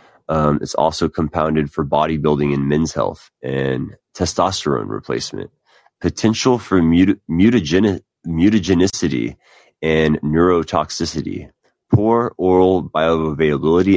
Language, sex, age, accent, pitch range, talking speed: English, male, 30-49, American, 75-90 Hz, 80 wpm